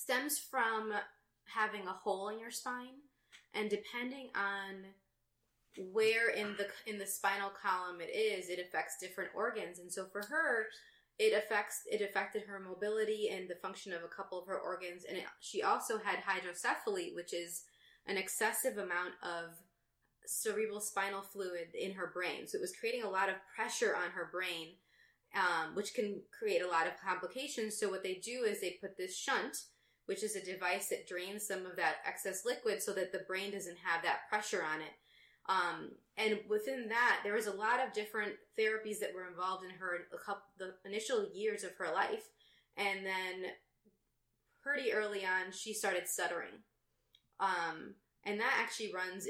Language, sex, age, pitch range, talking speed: English, female, 20-39, 185-220 Hz, 180 wpm